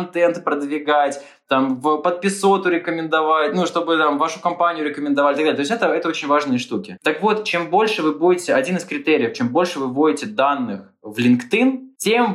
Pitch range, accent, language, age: 145-195 Hz, native, Russian, 20-39